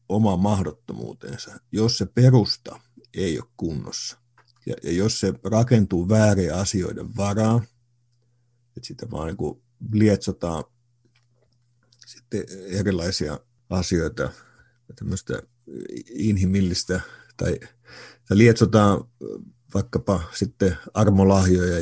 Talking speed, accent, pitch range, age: 85 wpm, native, 95-120 Hz, 50-69